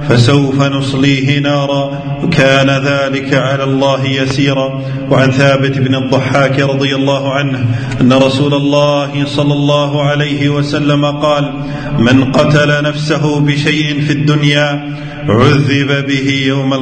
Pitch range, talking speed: 140-150 Hz, 115 wpm